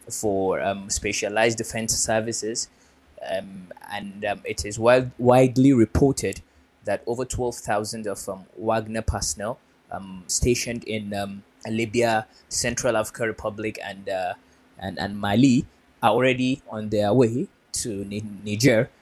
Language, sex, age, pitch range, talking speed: English, male, 20-39, 105-125 Hz, 125 wpm